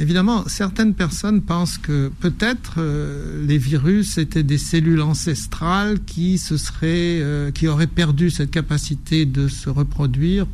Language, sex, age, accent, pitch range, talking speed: French, male, 60-79, French, 135-165 Hz, 120 wpm